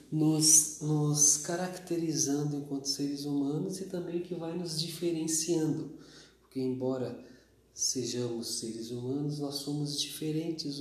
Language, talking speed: Portuguese, 110 wpm